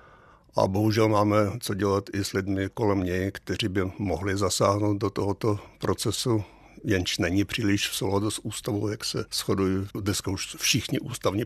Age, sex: 60-79, male